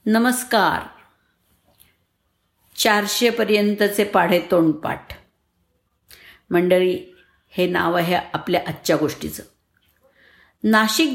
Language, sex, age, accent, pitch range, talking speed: Marathi, female, 50-69, native, 165-235 Hz, 65 wpm